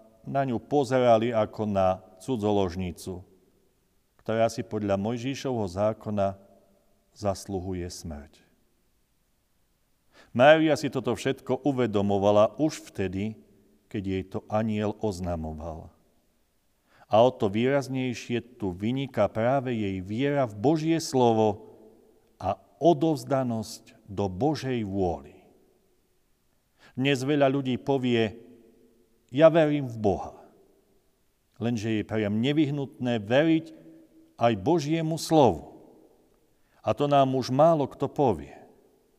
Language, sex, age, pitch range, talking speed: Slovak, male, 40-59, 105-140 Hz, 100 wpm